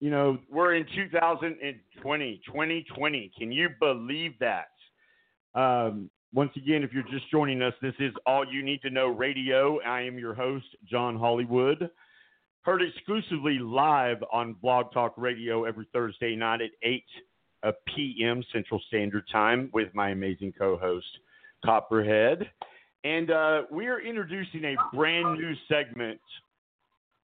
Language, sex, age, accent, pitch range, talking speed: English, male, 50-69, American, 110-145 Hz, 135 wpm